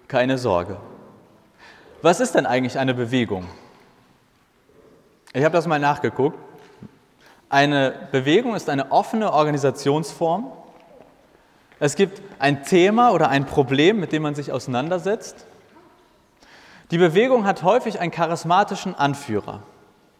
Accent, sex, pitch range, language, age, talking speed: German, male, 135-180 Hz, German, 30-49, 115 wpm